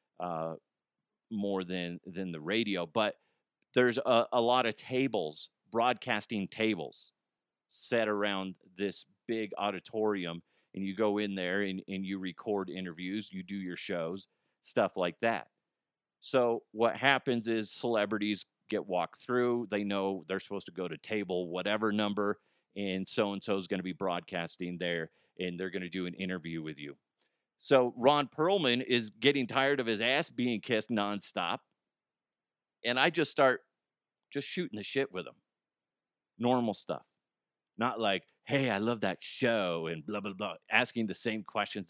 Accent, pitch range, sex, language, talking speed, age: American, 95-115 Hz, male, English, 160 wpm, 40-59